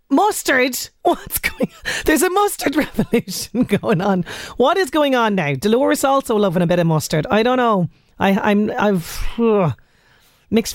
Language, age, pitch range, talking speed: English, 30-49, 200-280 Hz, 175 wpm